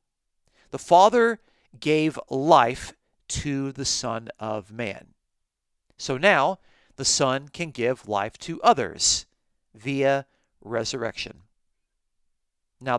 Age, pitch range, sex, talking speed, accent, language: 50-69, 110-145 Hz, male, 95 wpm, American, English